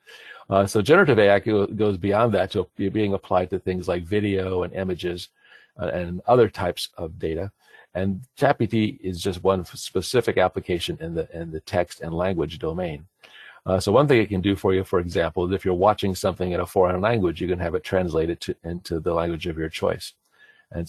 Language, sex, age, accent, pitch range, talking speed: English, male, 40-59, American, 90-105 Hz, 200 wpm